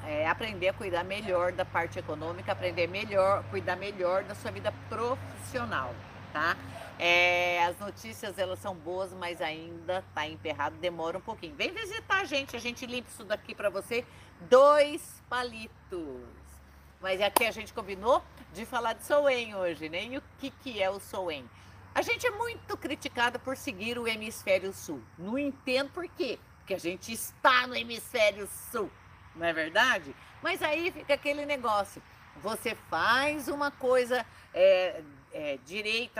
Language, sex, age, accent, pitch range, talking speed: Portuguese, female, 50-69, Brazilian, 185-275 Hz, 160 wpm